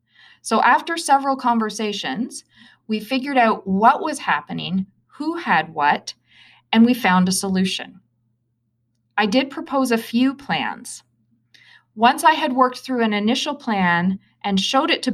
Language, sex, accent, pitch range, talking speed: English, female, American, 175-255 Hz, 145 wpm